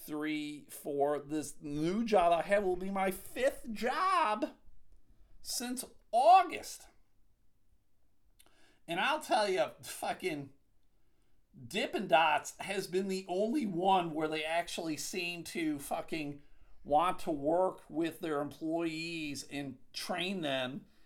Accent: American